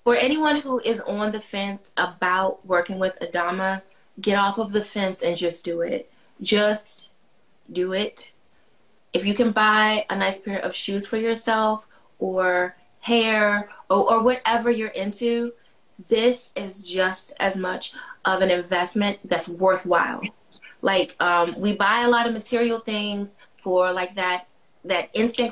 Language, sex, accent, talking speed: English, female, American, 155 wpm